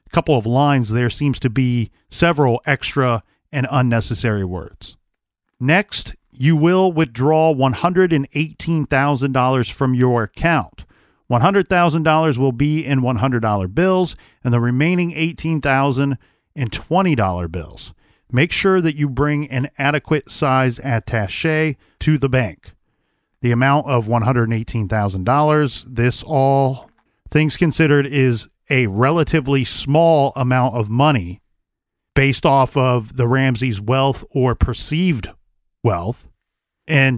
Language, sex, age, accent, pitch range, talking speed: English, male, 40-59, American, 120-150 Hz, 140 wpm